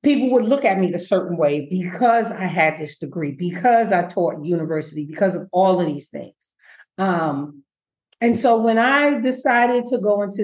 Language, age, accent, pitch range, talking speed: English, 40-59, American, 175-215 Hz, 185 wpm